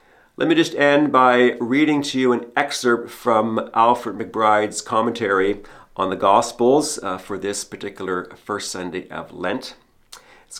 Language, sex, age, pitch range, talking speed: English, male, 40-59, 105-150 Hz, 145 wpm